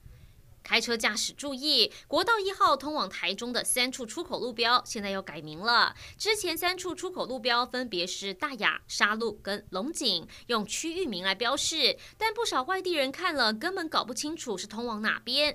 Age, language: 20-39, Chinese